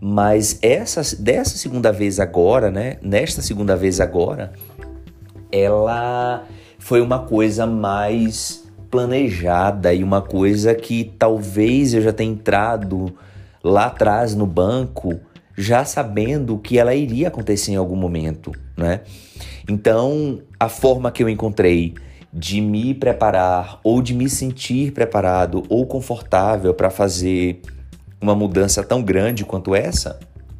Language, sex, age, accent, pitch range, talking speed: Portuguese, male, 30-49, Brazilian, 95-115 Hz, 125 wpm